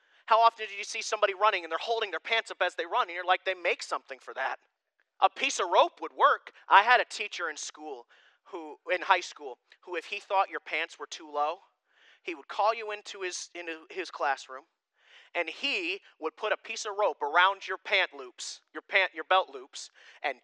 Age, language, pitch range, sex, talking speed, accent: 30-49, English, 200-300 Hz, male, 225 wpm, American